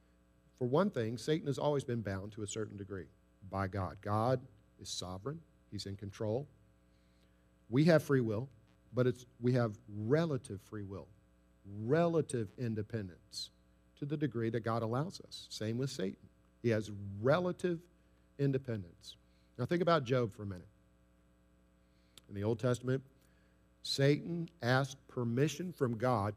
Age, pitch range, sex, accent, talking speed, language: 50-69, 90-140 Hz, male, American, 145 wpm, English